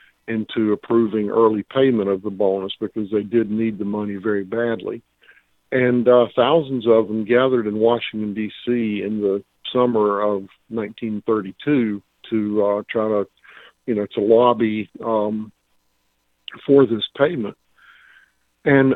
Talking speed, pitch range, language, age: 135 wpm, 105-120 Hz, English, 50-69